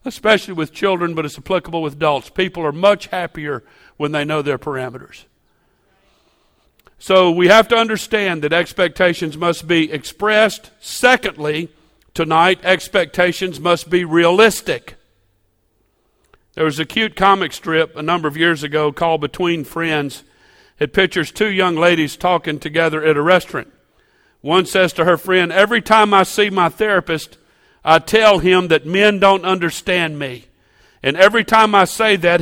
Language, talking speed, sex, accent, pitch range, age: English, 150 wpm, male, American, 160-195 Hz, 50-69